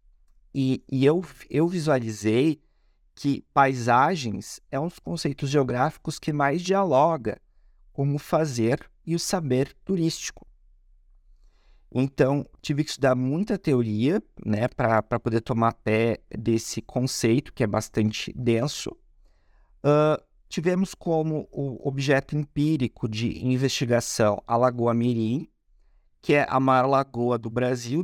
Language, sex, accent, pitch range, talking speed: Portuguese, male, Brazilian, 115-155 Hz, 120 wpm